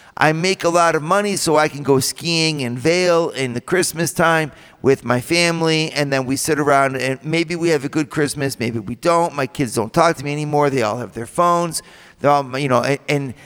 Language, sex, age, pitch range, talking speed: English, male, 50-69, 140-185 Hz, 230 wpm